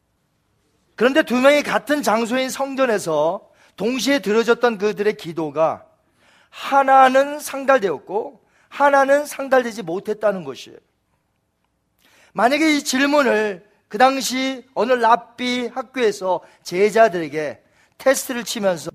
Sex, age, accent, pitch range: male, 40-59, native, 210-275 Hz